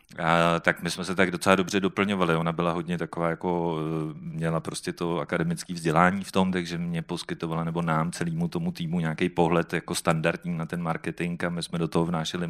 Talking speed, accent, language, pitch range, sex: 195 wpm, native, Czech, 85-90 Hz, male